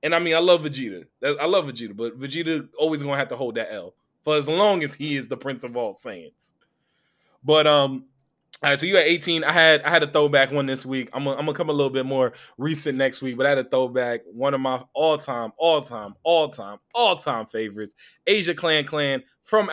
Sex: male